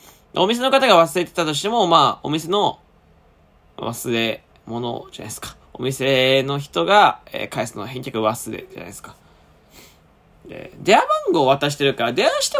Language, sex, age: Japanese, male, 20-39